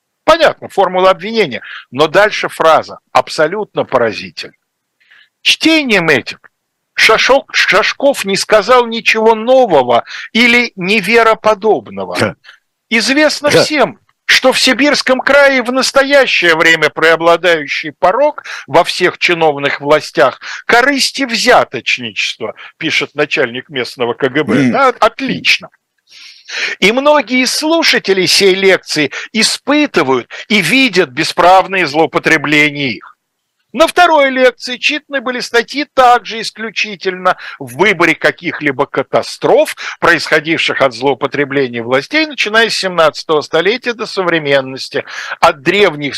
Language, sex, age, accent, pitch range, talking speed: Russian, male, 60-79, native, 155-255 Hz, 100 wpm